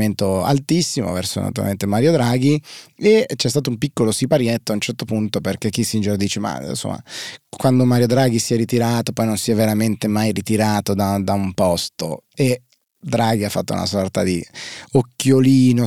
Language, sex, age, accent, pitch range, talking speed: Italian, male, 30-49, native, 100-125 Hz, 165 wpm